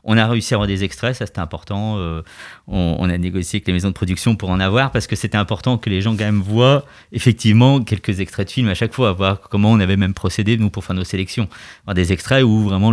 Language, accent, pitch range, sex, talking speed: French, French, 90-115 Hz, male, 265 wpm